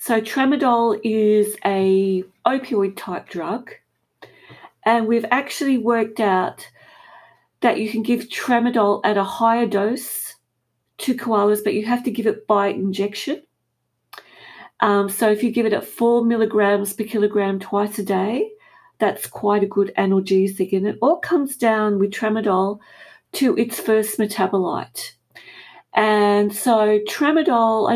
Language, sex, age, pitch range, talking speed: English, female, 40-59, 200-235 Hz, 135 wpm